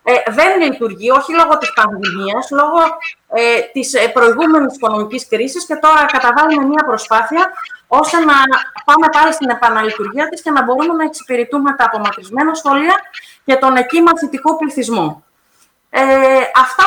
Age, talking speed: 30-49, 130 wpm